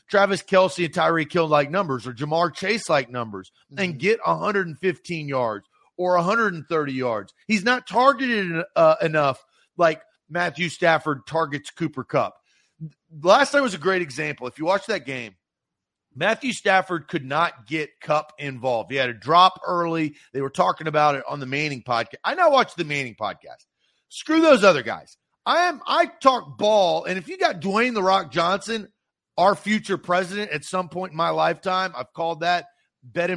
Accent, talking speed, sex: American, 175 wpm, male